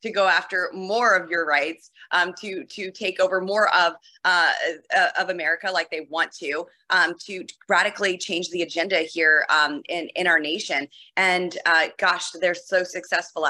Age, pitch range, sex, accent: 30-49, 170-215 Hz, female, American